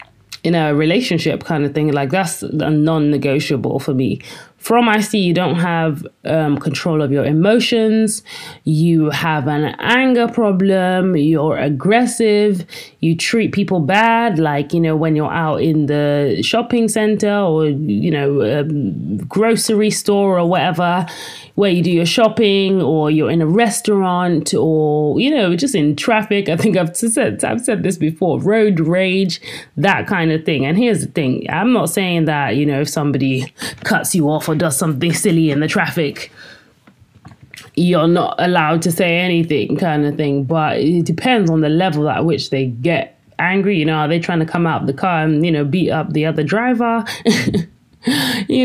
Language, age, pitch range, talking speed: English, 30-49, 150-195 Hz, 180 wpm